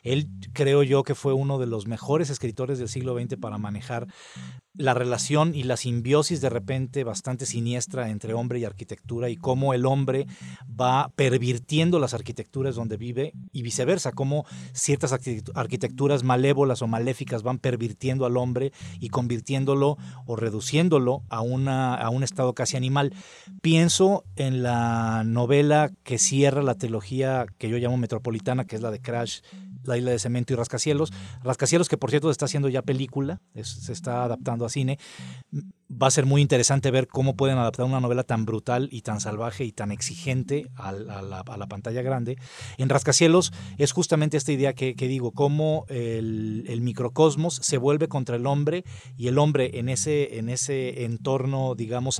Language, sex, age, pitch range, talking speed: Spanish, male, 40-59, 120-140 Hz, 170 wpm